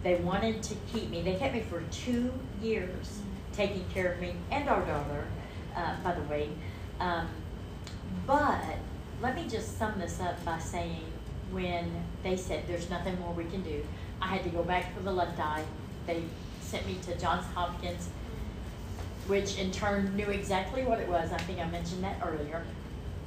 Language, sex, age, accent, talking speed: English, female, 40-59, American, 180 wpm